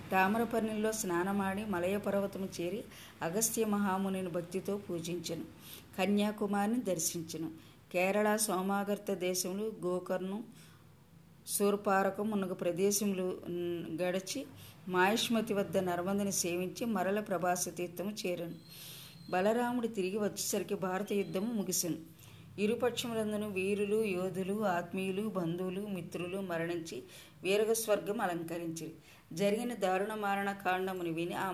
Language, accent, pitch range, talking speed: Telugu, native, 175-205 Hz, 90 wpm